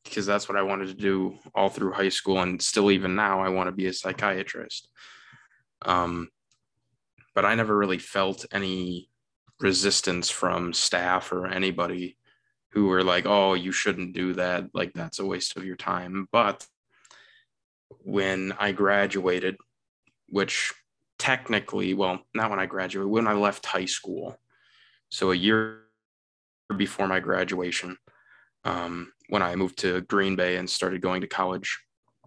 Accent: American